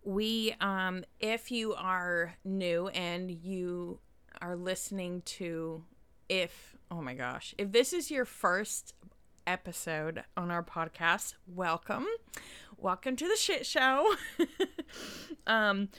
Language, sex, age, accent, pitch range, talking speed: English, female, 20-39, American, 170-195 Hz, 115 wpm